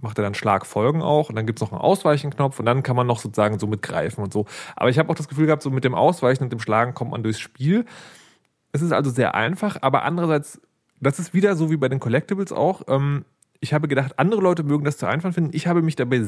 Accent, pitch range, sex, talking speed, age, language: German, 115-150 Hz, male, 260 wpm, 30-49, English